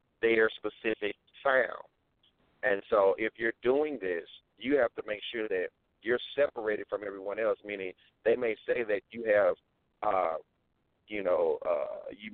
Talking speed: 155 wpm